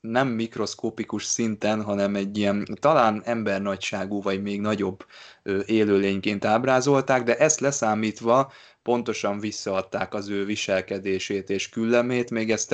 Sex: male